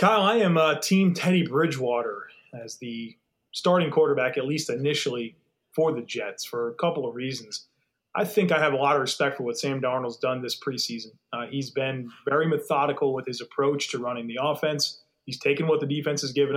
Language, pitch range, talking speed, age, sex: English, 135-170 Hz, 205 wpm, 30-49, male